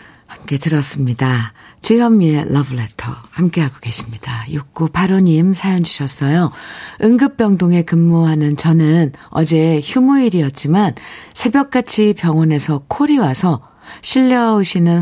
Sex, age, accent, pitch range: female, 50-69, native, 130-170 Hz